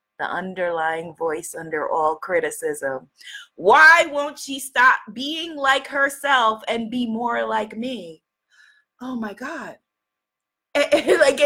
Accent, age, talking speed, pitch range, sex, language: American, 20-39, 115 wpm, 220-315 Hz, female, English